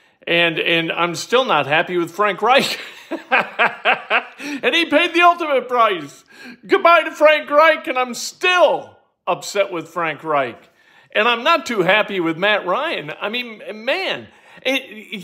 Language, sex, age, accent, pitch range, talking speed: English, male, 50-69, American, 195-290 Hz, 150 wpm